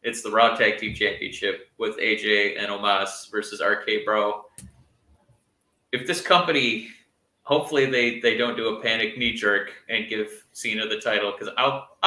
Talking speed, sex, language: 160 wpm, male, English